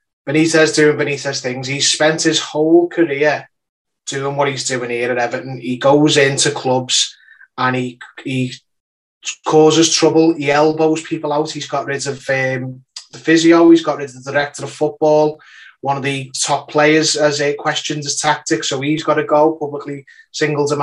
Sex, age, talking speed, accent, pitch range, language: male, 20-39, 175 wpm, British, 135-150 Hz, English